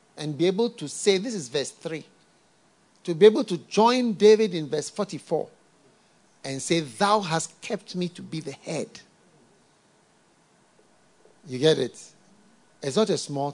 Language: English